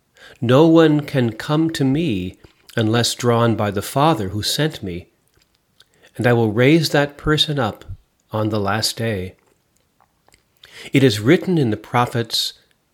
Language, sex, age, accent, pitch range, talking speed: English, male, 40-59, American, 105-135 Hz, 145 wpm